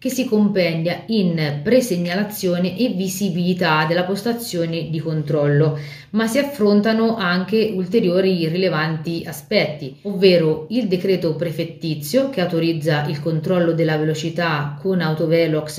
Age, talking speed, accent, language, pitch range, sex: 30-49, 115 wpm, native, Italian, 165-210 Hz, female